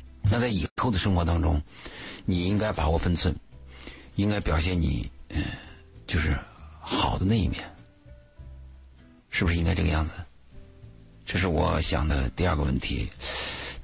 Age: 60-79